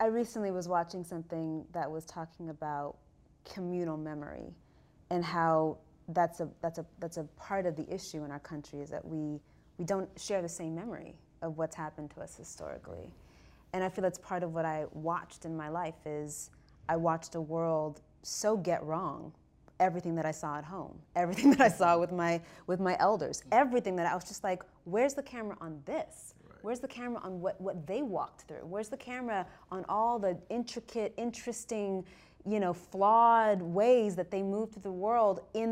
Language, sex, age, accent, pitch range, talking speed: English, female, 20-39, American, 165-205 Hz, 195 wpm